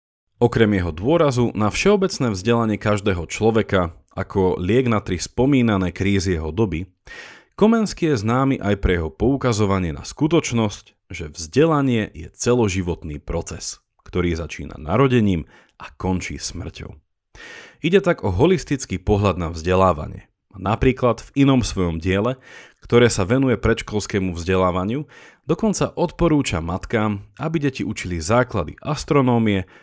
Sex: male